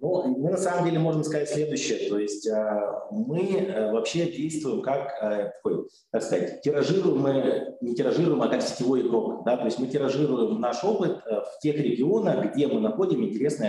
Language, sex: Russian, male